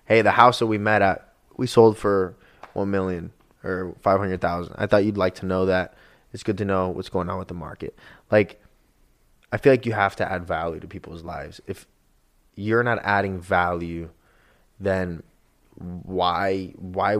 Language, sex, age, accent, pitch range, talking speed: English, male, 20-39, American, 95-115 Hz, 180 wpm